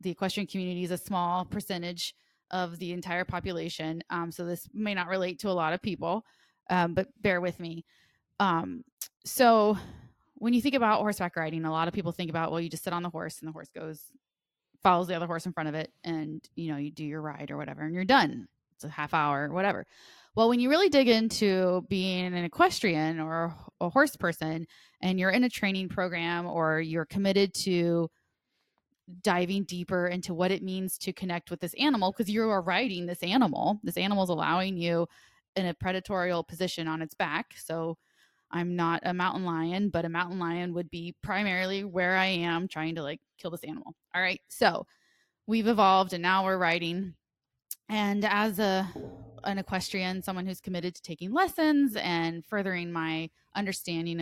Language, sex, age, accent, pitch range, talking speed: English, female, 20-39, American, 165-195 Hz, 195 wpm